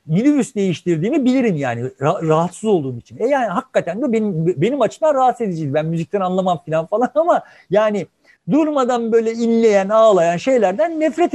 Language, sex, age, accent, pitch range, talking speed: Turkish, male, 50-69, native, 160-250 Hz, 150 wpm